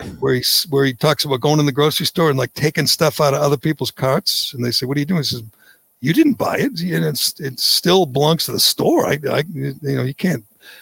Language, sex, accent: English, male, American